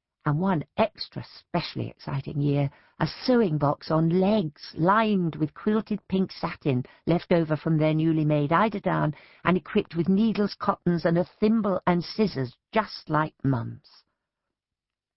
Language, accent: English, British